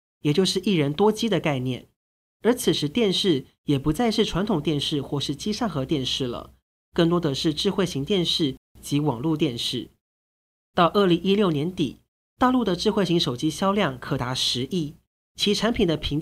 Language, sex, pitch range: Chinese, male, 140-195 Hz